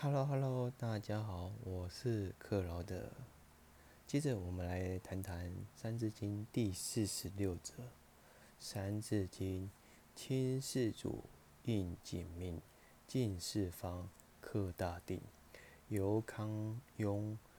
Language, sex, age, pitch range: Chinese, male, 20-39, 85-105 Hz